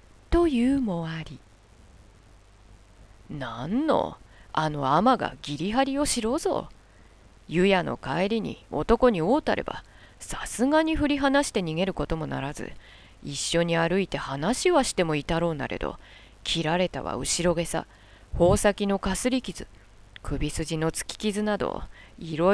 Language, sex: Japanese, female